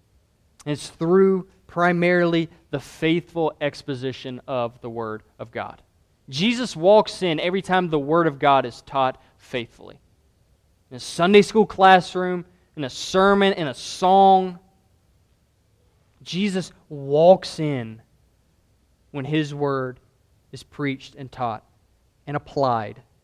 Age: 20-39